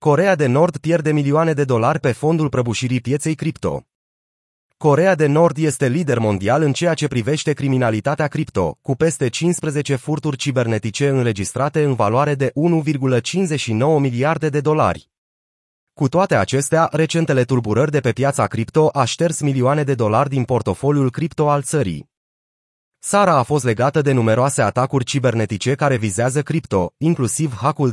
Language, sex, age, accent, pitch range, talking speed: Romanian, male, 30-49, native, 120-150 Hz, 150 wpm